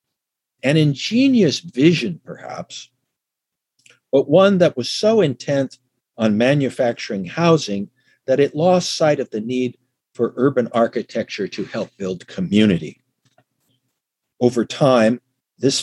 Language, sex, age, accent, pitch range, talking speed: English, male, 60-79, American, 115-140 Hz, 115 wpm